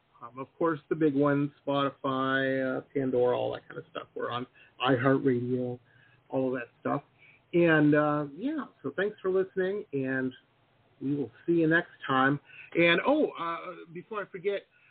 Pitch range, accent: 135-180 Hz, American